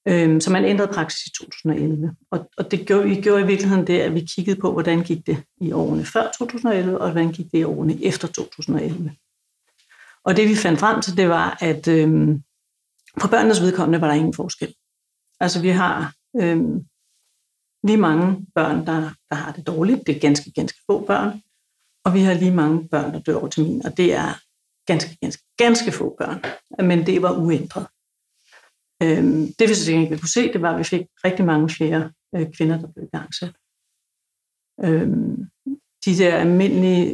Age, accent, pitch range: 60-79, native, 155-185 Hz